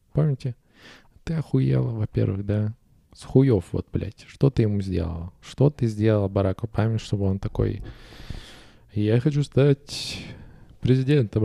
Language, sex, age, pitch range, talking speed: Russian, male, 20-39, 90-120 Hz, 130 wpm